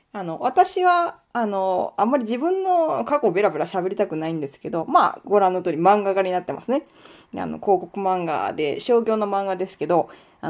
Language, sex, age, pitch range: Japanese, female, 20-39, 180-260 Hz